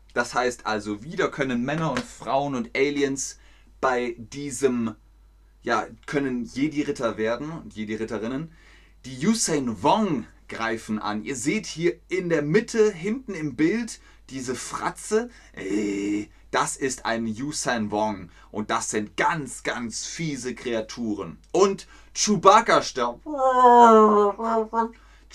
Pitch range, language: 110-155 Hz, German